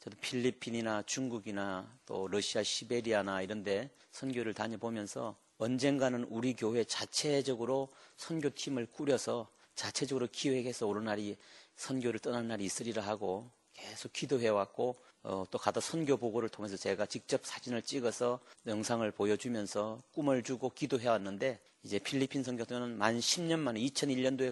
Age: 40-59